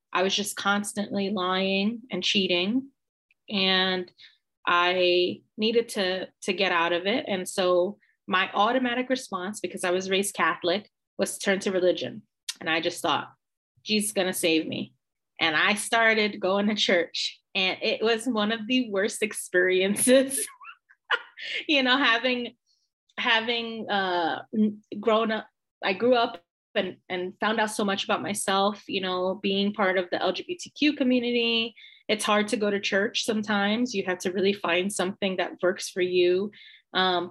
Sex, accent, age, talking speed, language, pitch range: female, American, 30-49, 160 wpm, English, 185-220 Hz